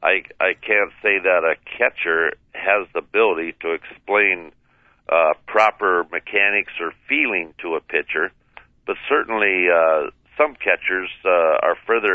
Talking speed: 140 wpm